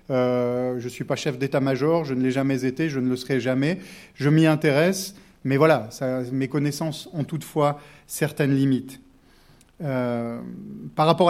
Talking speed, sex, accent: 170 wpm, male, French